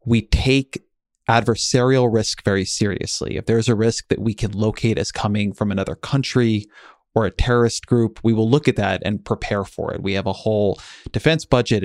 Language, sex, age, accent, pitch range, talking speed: English, male, 30-49, American, 105-120 Hz, 195 wpm